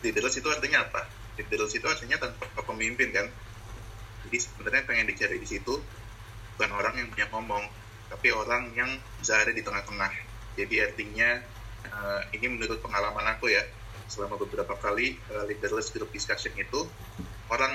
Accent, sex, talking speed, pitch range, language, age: native, male, 140 wpm, 110-115 Hz, Indonesian, 20-39